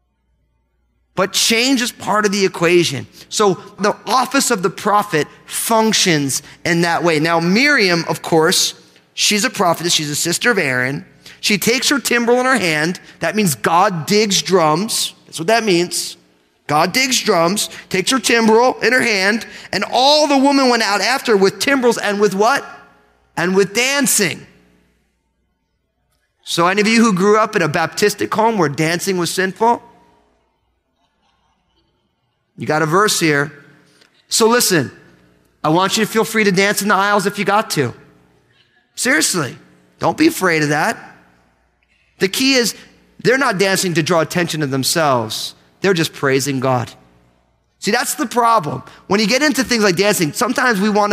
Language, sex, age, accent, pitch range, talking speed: English, male, 30-49, American, 145-215 Hz, 165 wpm